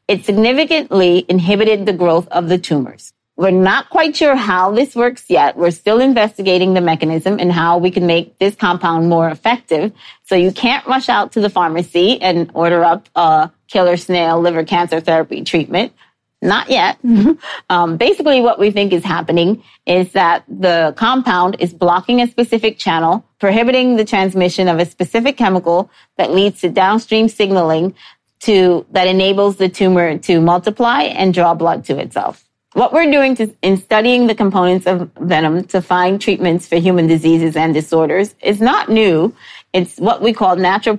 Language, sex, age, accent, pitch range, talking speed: English, female, 30-49, American, 170-220 Hz, 170 wpm